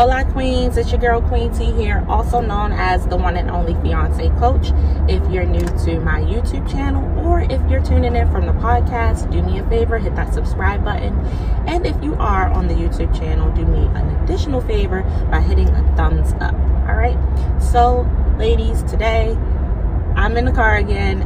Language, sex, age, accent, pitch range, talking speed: English, female, 20-39, American, 75-85 Hz, 190 wpm